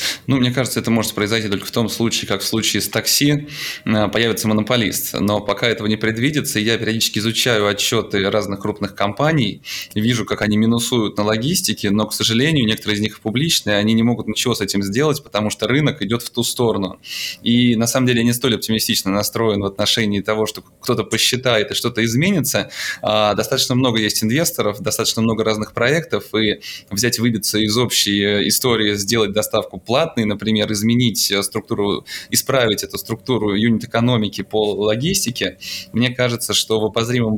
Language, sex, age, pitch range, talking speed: Russian, male, 20-39, 105-120 Hz, 170 wpm